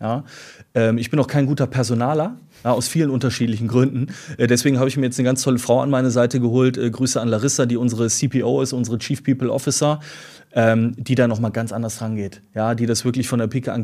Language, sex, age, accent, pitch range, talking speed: German, male, 30-49, German, 115-130 Hz, 235 wpm